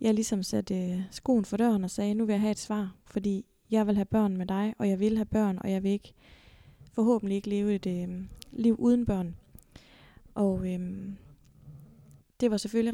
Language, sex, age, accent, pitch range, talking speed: Danish, female, 20-39, native, 190-225 Hz, 205 wpm